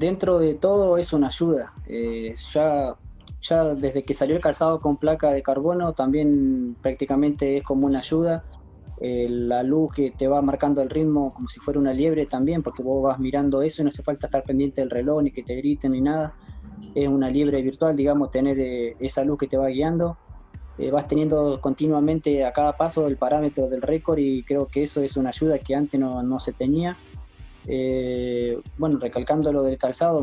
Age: 20-39